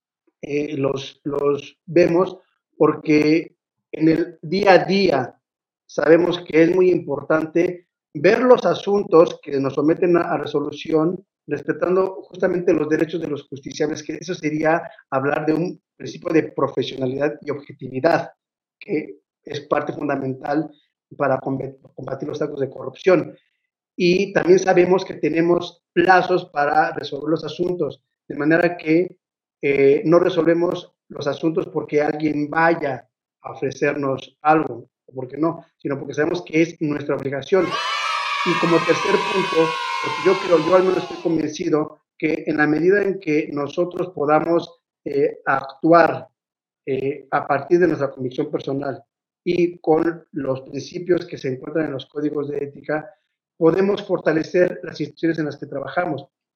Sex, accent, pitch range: male, Mexican, 145-175 Hz